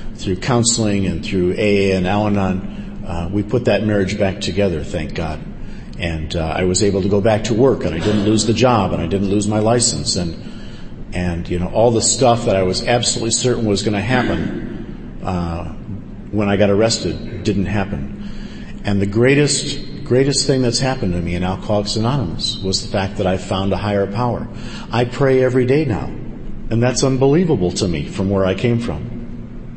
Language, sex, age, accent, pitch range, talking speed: English, male, 50-69, American, 100-120 Hz, 195 wpm